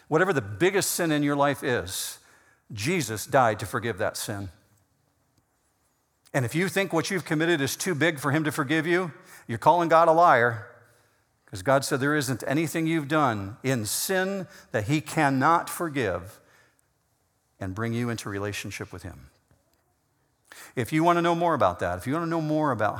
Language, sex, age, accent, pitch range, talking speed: English, male, 50-69, American, 110-150 Hz, 185 wpm